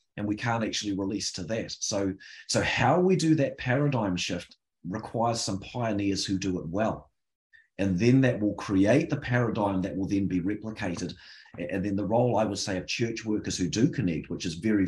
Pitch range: 90-115 Hz